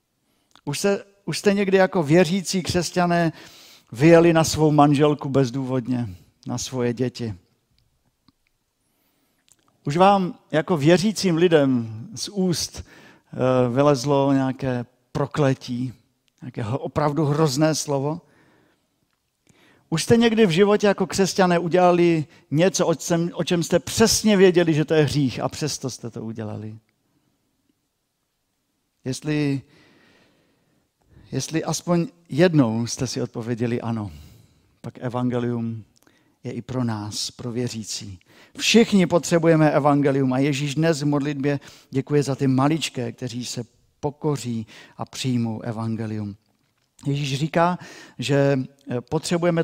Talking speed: 110 wpm